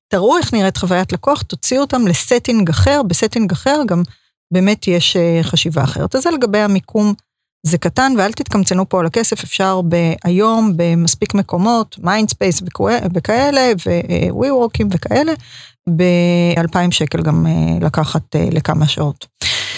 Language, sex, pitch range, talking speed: Hebrew, female, 170-210 Hz, 130 wpm